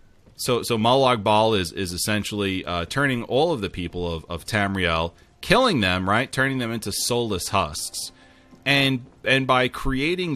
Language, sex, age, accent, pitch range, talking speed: English, male, 30-49, American, 90-125 Hz, 160 wpm